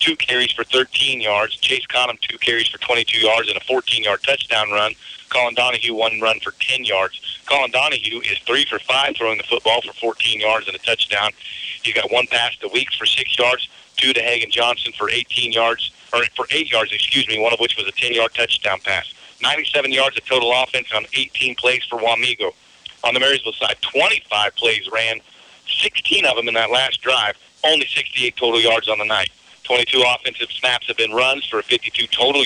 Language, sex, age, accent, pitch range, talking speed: English, male, 40-59, American, 115-130 Hz, 200 wpm